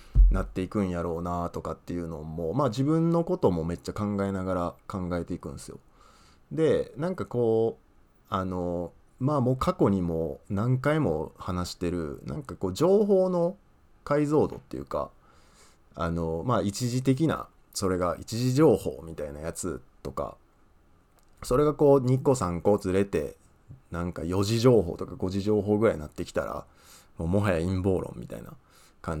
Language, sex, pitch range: Japanese, male, 85-130 Hz